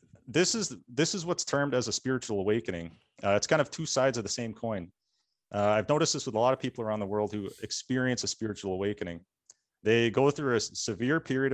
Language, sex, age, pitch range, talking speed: English, male, 30-49, 105-130 Hz, 225 wpm